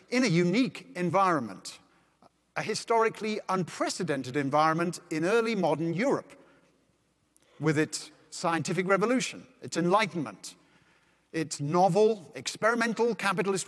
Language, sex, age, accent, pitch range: Korean, male, 50-69, British, 165-225 Hz